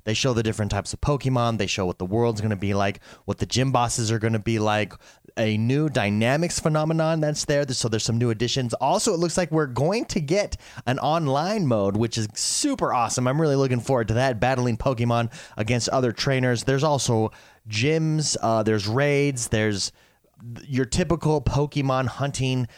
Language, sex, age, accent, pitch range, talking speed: English, male, 30-49, American, 110-145 Hz, 190 wpm